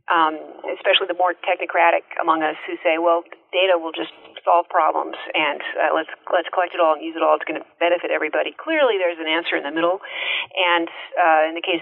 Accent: American